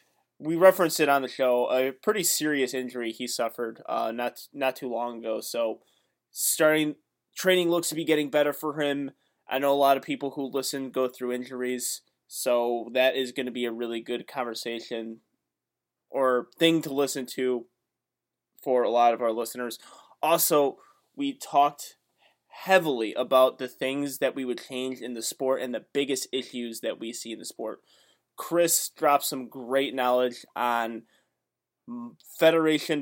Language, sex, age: English, male, 20-39